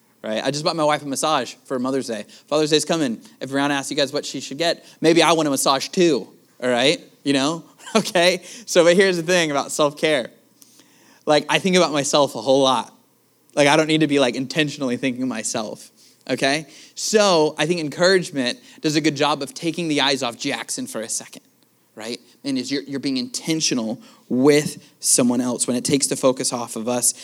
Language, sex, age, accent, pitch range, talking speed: English, male, 20-39, American, 130-160 Hz, 210 wpm